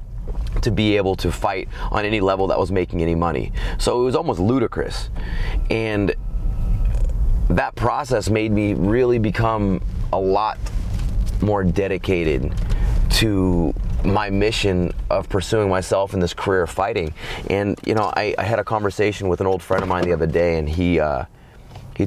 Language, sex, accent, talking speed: English, male, American, 165 wpm